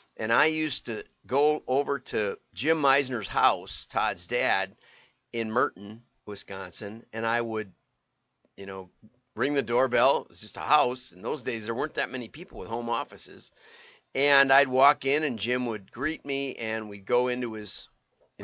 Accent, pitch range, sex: American, 110-135 Hz, male